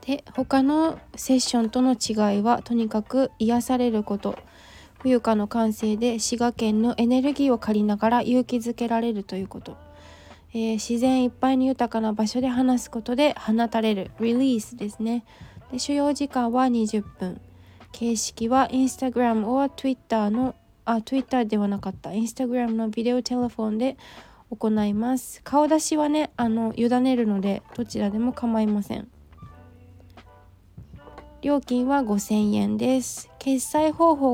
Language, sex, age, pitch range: Japanese, female, 20-39, 215-260 Hz